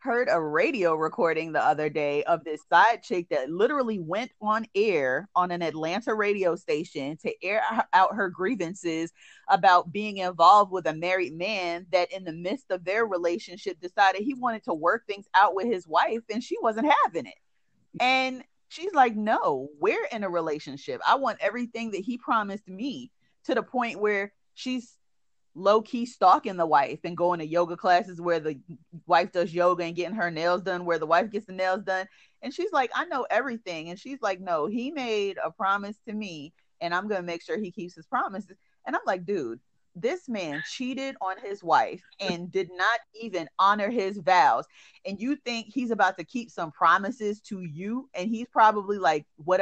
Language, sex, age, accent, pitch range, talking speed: English, female, 30-49, American, 175-230 Hz, 190 wpm